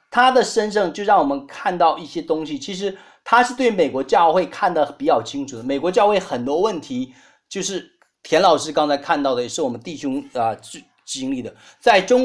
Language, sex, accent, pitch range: Chinese, male, native, 185-265 Hz